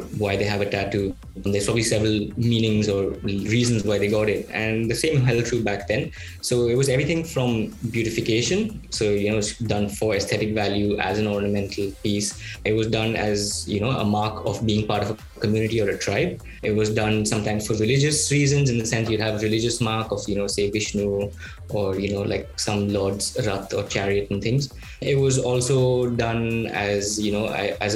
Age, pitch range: 20-39, 105-120 Hz